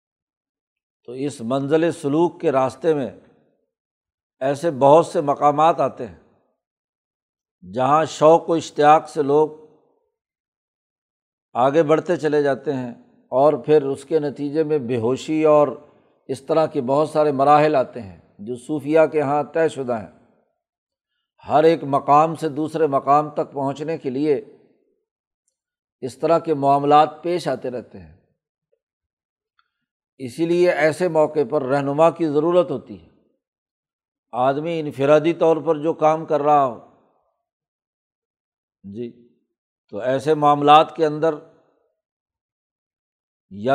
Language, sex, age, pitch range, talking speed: Urdu, male, 60-79, 135-160 Hz, 125 wpm